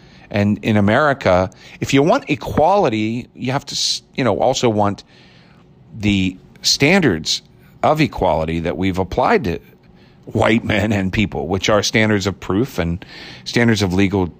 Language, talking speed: English, 145 wpm